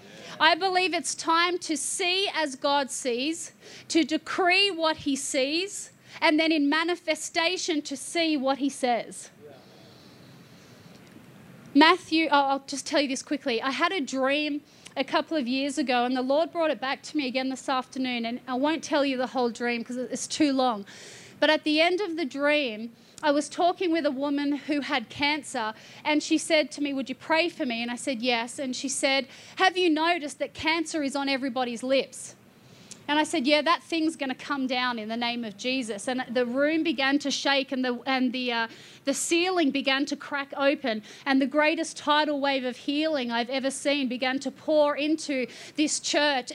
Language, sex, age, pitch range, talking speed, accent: English, female, 30-49, 260-310 Hz, 195 wpm, Australian